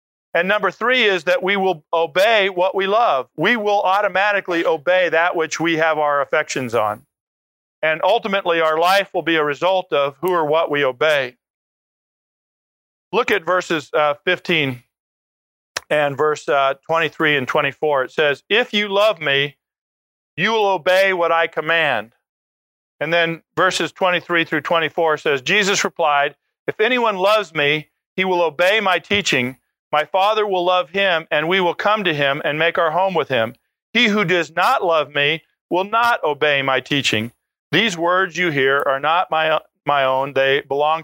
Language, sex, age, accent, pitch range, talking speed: English, male, 50-69, American, 150-195 Hz, 170 wpm